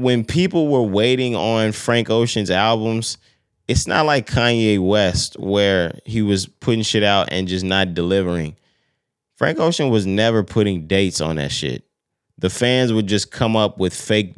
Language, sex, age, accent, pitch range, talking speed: English, male, 20-39, American, 90-110 Hz, 165 wpm